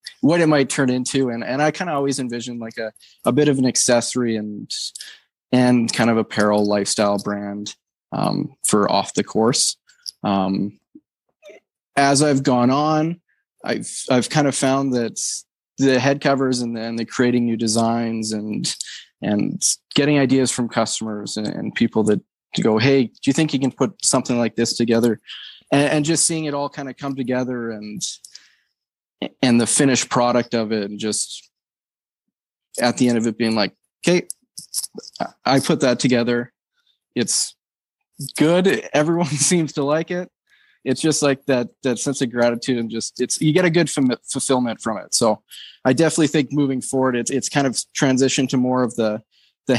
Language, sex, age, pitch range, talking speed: English, male, 20-39, 115-140 Hz, 175 wpm